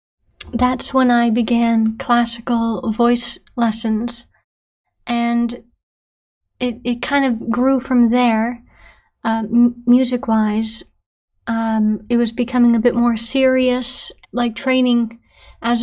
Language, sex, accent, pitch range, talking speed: English, female, American, 220-245 Hz, 100 wpm